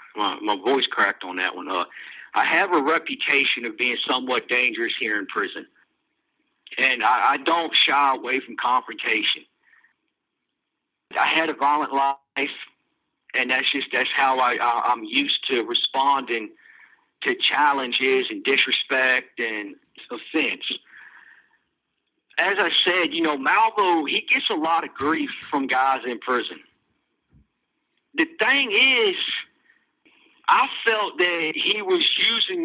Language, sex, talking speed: English, male, 135 wpm